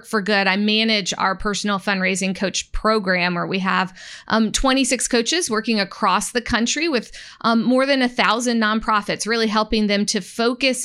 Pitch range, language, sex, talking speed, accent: 195-235 Hz, English, female, 170 wpm, American